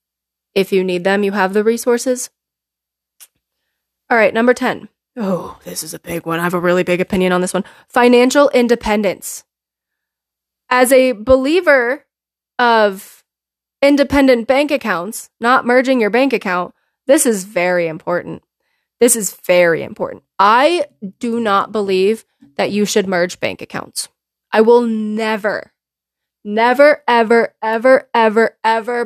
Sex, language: female, English